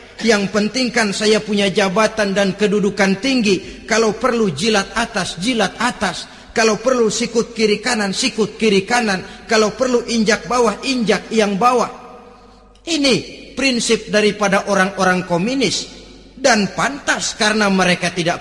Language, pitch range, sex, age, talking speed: Indonesian, 180-225 Hz, male, 40-59, 125 wpm